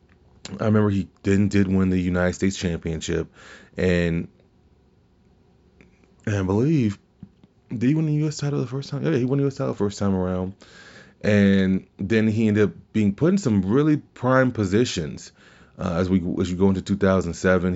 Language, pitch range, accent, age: English, 90-105 Hz, American, 20-39